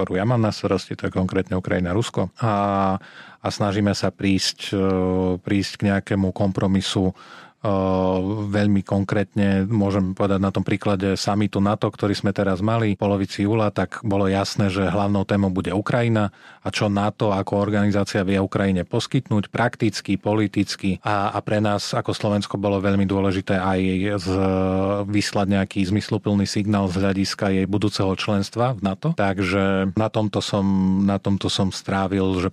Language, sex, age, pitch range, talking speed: Slovak, male, 30-49, 95-105 Hz, 155 wpm